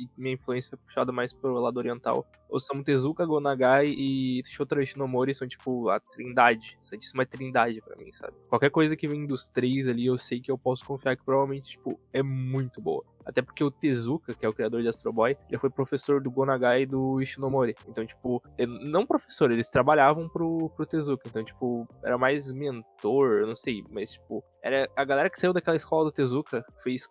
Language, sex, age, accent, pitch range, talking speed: Portuguese, male, 10-29, Brazilian, 125-140 Hz, 195 wpm